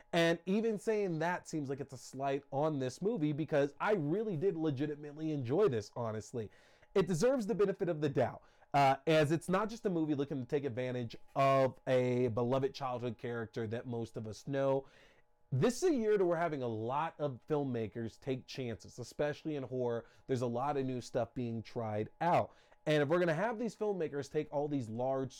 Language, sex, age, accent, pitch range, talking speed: English, male, 30-49, American, 120-165 Hz, 200 wpm